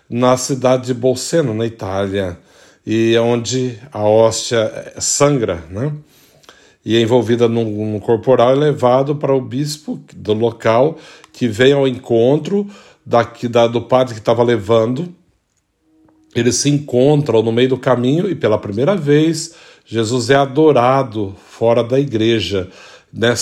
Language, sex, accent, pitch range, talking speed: Portuguese, male, Brazilian, 115-140 Hz, 145 wpm